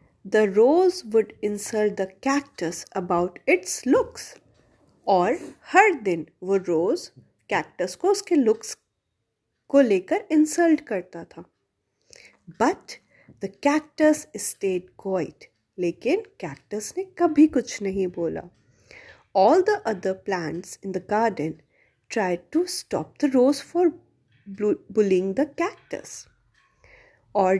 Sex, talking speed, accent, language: female, 110 wpm, Indian, English